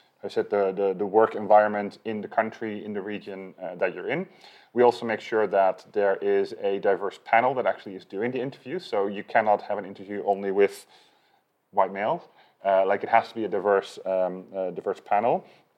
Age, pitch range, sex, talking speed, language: 30-49, 100-115 Hz, male, 210 wpm, English